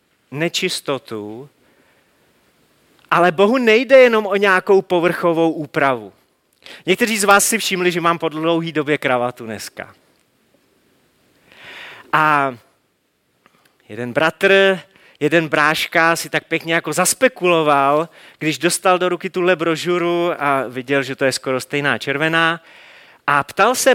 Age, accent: 30-49, native